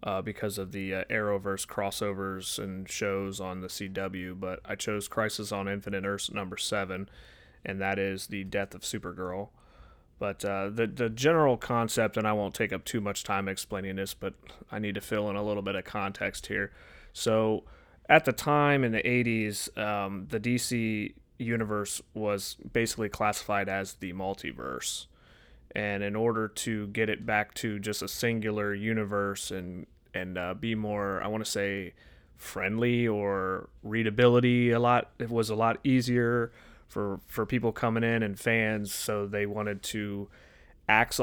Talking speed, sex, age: 170 wpm, male, 30-49